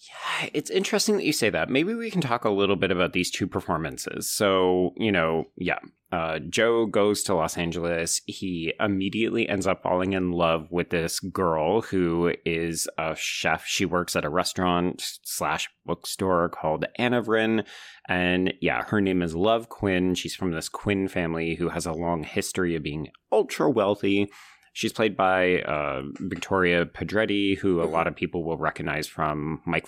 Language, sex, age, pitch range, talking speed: English, male, 30-49, 85-105 Hz, 175 wpm